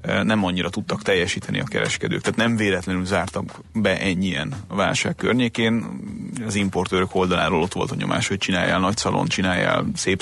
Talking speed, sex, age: 160 wpm, male, 30-49